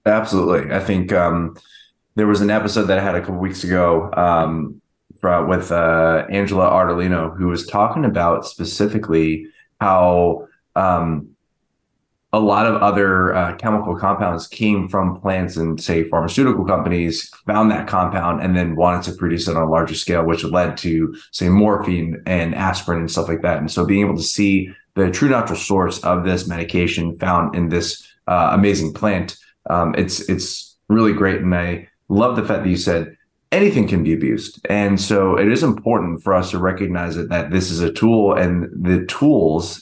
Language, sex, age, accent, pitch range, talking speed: English, male, 20-39, American, 85-100 Hz, 180 wpm